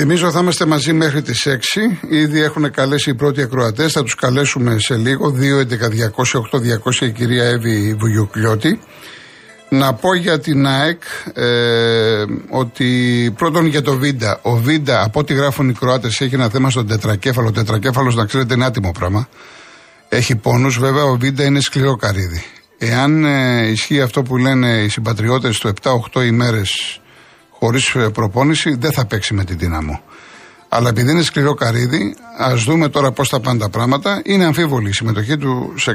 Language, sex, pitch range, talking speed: Greek, male, 115-150 Hz, 170 wpm